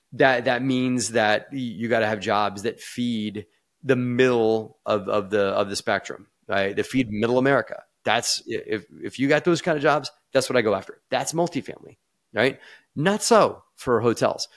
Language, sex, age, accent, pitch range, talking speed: English, male, 30-49, American, 105-135 Hz, 185 wpm